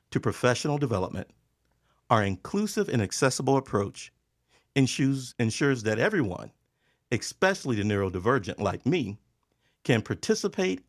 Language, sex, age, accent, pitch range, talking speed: English, male, 50-69, American, 105-140 Hz, 105 wpm